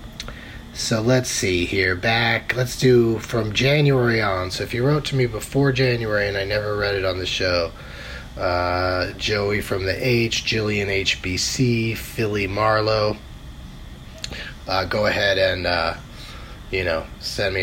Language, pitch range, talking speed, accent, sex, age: English, 95-130 Hz, 150 wpm, American, male, 30-49